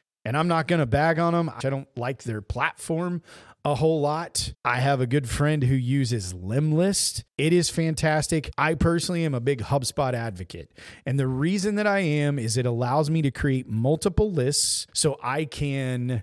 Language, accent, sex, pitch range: English, American, male, 120-150 Hz